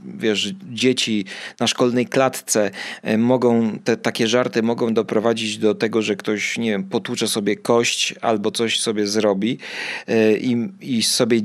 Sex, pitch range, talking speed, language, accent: male, 115-165 Hz, 140 wpm, Polish, native